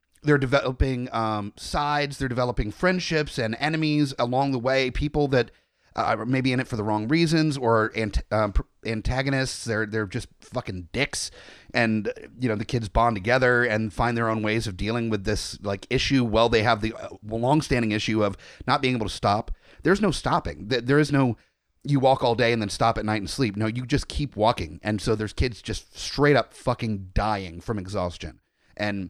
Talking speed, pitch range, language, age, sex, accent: 200 wpm, 105-130 Hz, English, 30-49, male, American